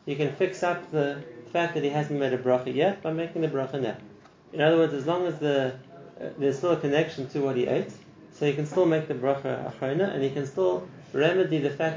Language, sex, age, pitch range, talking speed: English, male, 30-49, 130-155 Hz, 245 wpm